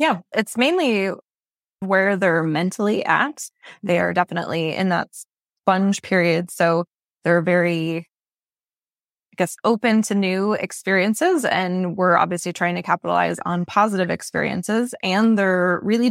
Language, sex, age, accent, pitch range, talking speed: English, female, 20-39, American, 175-210 Hz, 130 wpm